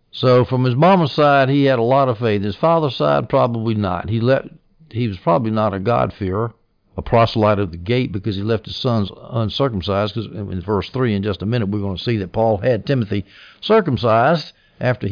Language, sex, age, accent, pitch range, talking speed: English, male, 60-79, American, 100-130 Hz, 210 wpm